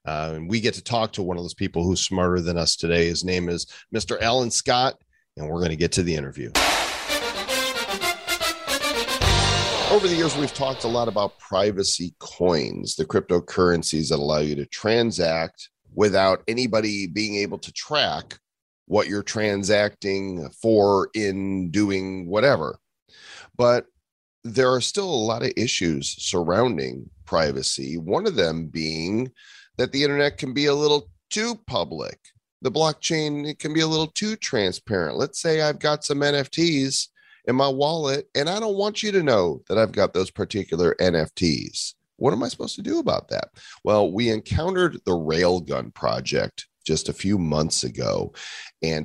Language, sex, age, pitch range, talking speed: English, male, 40-59, 85-140 Hz, 165 wpm